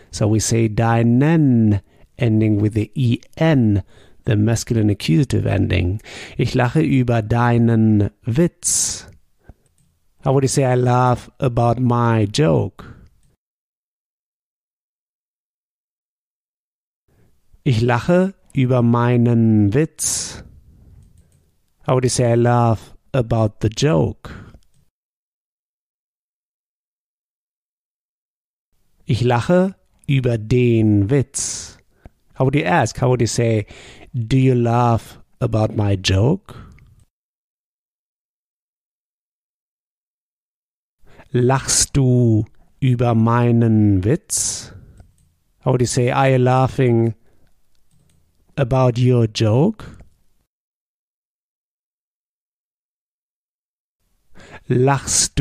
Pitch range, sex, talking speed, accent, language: 110-130 Hz, male, 80 wpm, German, German